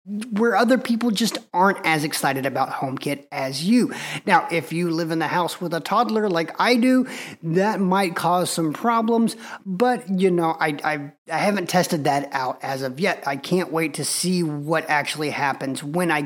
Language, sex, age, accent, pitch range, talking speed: English, male, 30-49, American, 155-200 Hz, 190 wpm